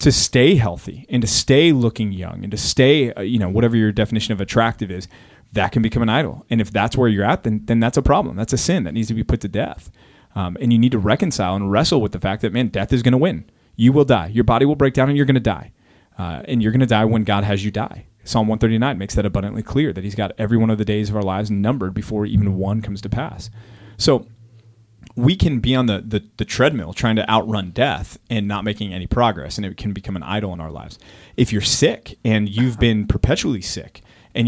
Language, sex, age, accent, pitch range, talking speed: English, male, 30-49, American, 105-125 Hz, 255 wpm